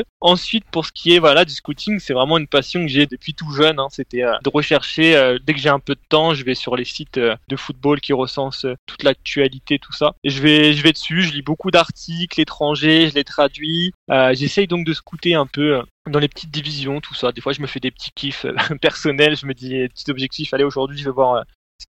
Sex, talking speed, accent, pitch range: male, 260 wpm, French, 140-160 Hz